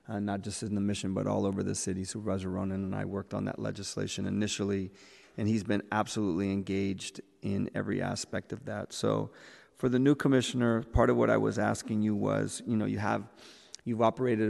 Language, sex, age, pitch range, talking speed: English, male, 30-49, 100-110 Hz, 205 wpm